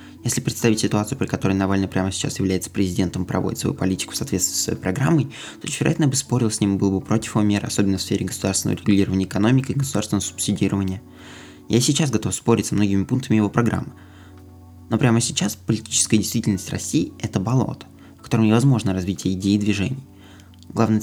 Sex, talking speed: male, 190 wpm